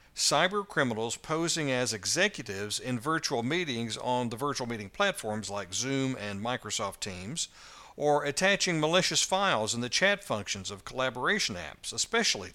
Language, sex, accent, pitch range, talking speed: English, male, American, 115-155 Hz, 145 wpm